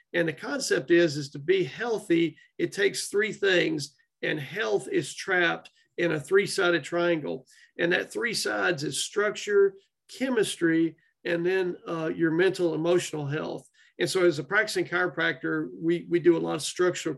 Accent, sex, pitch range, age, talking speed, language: American, male, 160-195 Hz, 40-59, 165 wpm, English